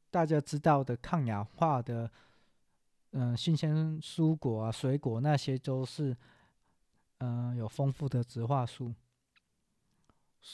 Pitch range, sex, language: 120-150 Hz, male, Chinese